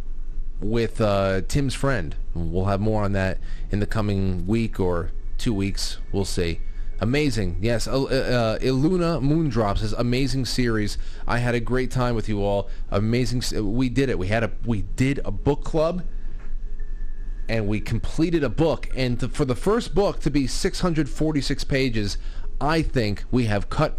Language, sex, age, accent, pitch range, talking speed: English, male, 30-49, American, 100-135 Hz, 170 wpm